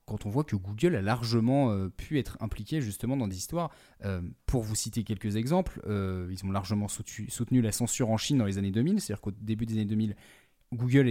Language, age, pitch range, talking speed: French, 20-39, 105-130 Hz, 220 wpm